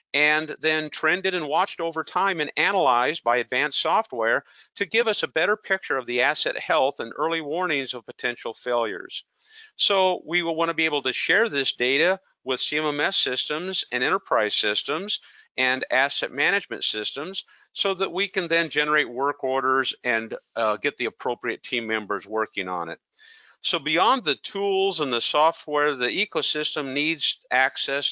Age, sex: 50-69, male